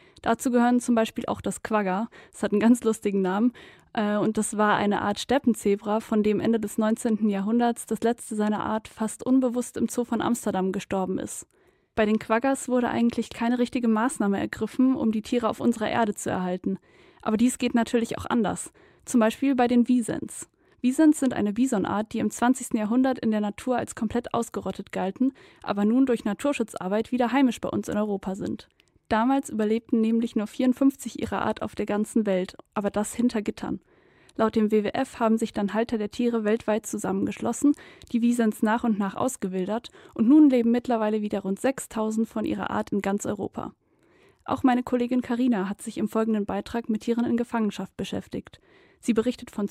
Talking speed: 185 wpm